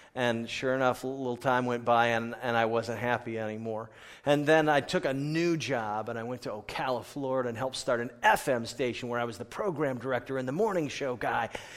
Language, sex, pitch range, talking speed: English, male, 120-145 Hz, 225 wpm